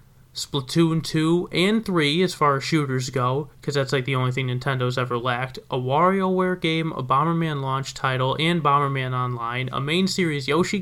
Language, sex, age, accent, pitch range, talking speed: English, male, 20-39, American, 140-180 Hz, 180 wpm